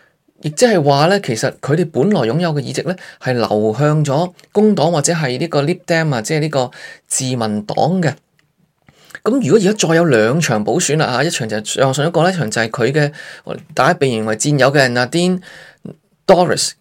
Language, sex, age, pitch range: Chinese, male, 20-39, 130-175 Hz